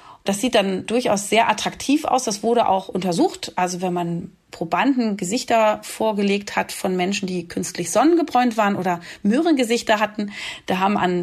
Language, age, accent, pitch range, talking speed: German, 30-49, German, 195-255 Hz, 160 wpm